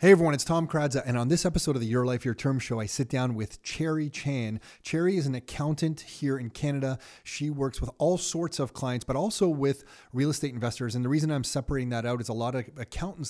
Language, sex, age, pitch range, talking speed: English, male, 30-49, 120-150 Hz, 245 wpm